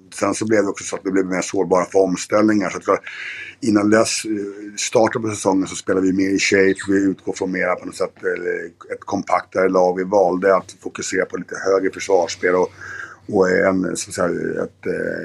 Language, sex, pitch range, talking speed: Swedish, male, 95-110 Hz, 190 wpm